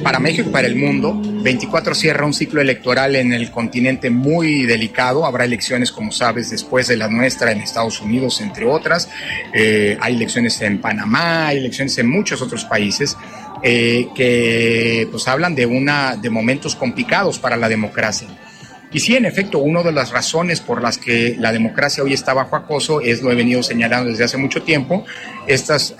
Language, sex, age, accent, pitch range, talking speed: Spanish, male, 40-59, Mexican, 115-155 Hz, 180 wpm